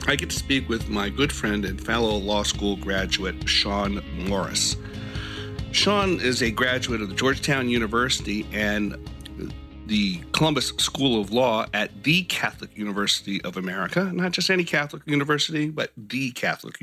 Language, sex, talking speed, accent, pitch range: English, male, 155 wpm, American, 100-145 Hz